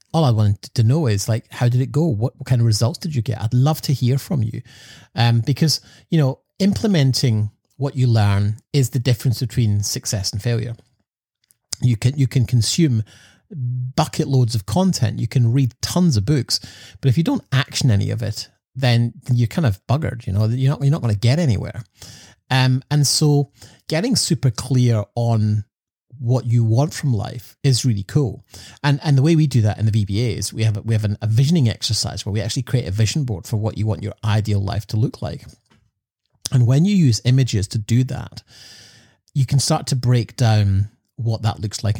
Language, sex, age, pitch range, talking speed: English, male, 30-49, 110-130 Hz, 205 wpm